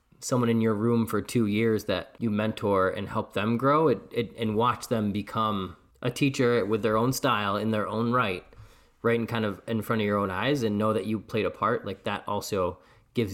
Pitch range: 100-120 Hz